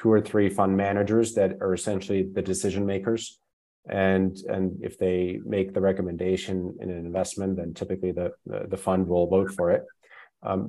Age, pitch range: 30-49, 95-110 Hz